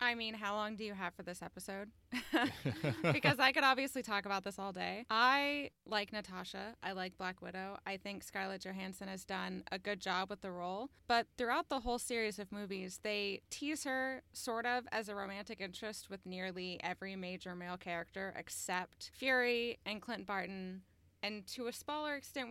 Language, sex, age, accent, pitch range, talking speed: English, female, 20-39, American, 185-225 Hz, 185 wpm